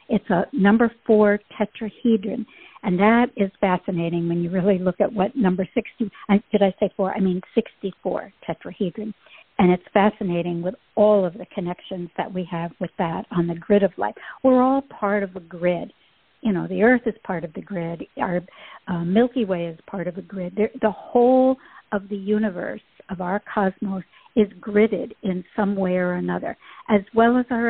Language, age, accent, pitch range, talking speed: English, 60-79, American, 185-225 Hz, 185 wpm